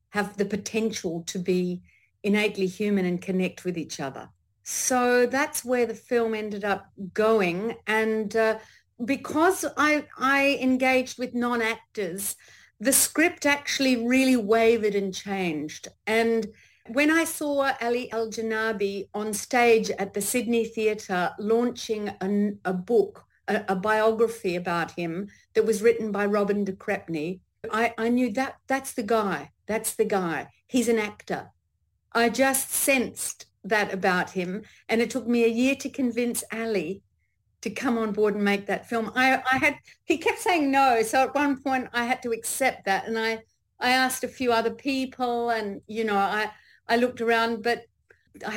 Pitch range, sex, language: 200-245 Hz, female, English